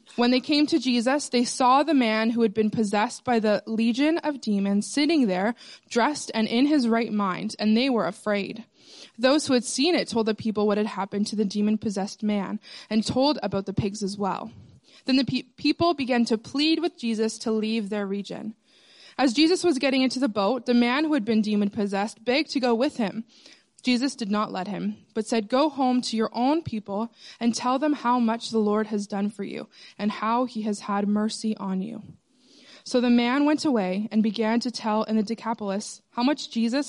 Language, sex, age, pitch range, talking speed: English, female, 20-39, 215-270 Hz, 210 wpm